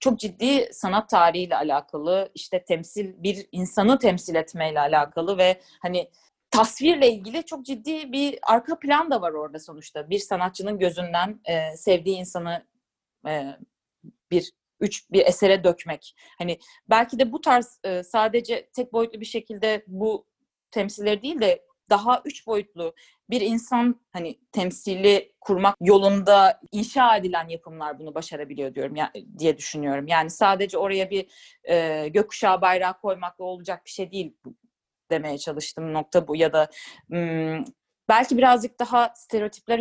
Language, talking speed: Turkish, 145 wpm